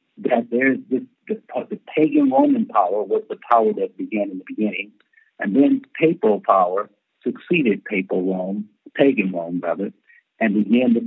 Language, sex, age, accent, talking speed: English, male, 60-79, American, 165 wpm